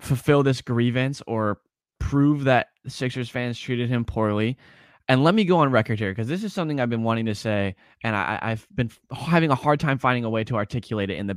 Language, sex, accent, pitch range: English, male, American, 110-140 Hz